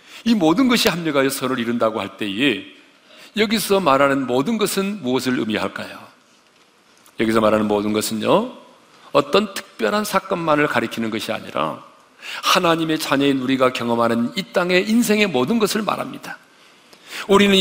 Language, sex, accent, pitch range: Korean, male, native, 155-205 Hz